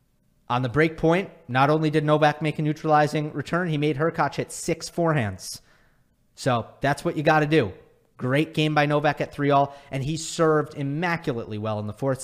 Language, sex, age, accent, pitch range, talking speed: English, male, 30-49, American, 120-155 Hz, 190 wpm